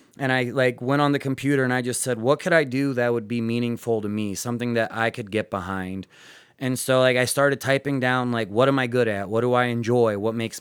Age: 30-49